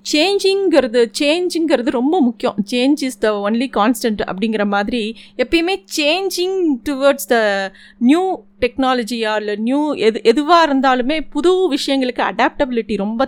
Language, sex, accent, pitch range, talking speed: Tamil, female, native, 215-290 Hz, 120 wpm